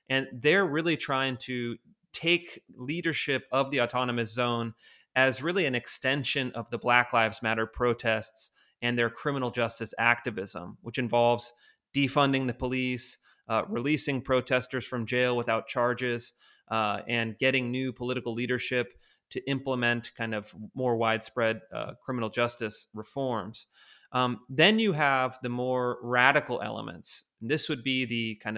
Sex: male